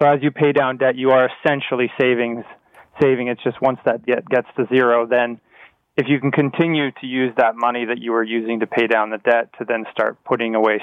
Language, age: English, 20-39